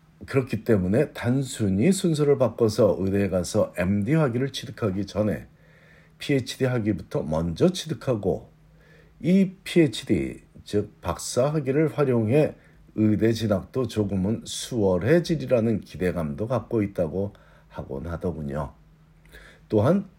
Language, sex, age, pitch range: Korean, male, 50-69, 100-155 Hz